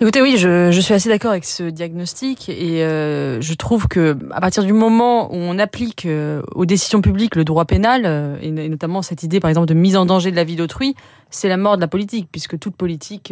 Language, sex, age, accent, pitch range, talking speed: French, female, 20-39, French, 165-205 Hz, 230 wpm